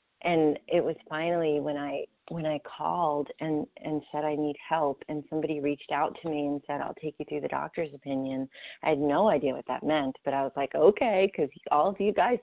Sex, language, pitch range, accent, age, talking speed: female, English, 145-165 Hz, American, 30-49, 225 wpm